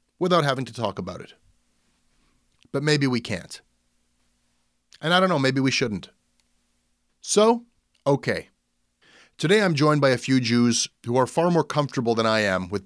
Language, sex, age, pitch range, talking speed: English, male, 30-49, 110-175 Hz, 165 wpm